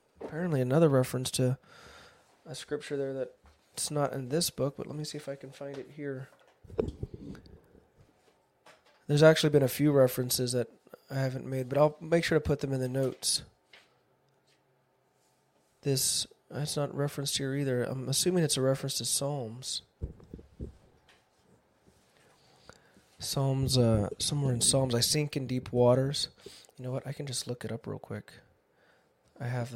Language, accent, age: English, American, 20-39